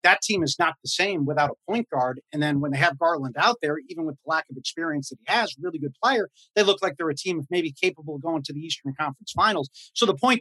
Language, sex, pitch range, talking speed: English, male, 145-195 Hz, 280 wpm